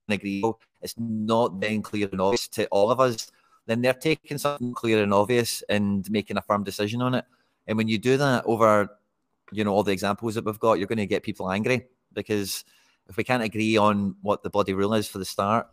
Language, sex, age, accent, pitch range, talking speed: English, male, 30-49, British, 100-115 Hz, 225 wpm